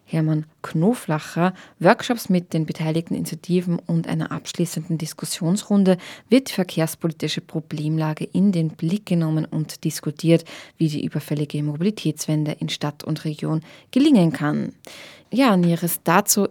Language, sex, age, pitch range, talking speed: German, female, 20-39, 160-185 Hz, 125 wpm